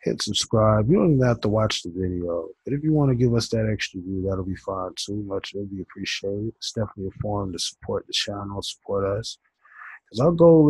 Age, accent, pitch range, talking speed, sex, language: 20-39, American, 95-120 Hz, 235 wpm, male, English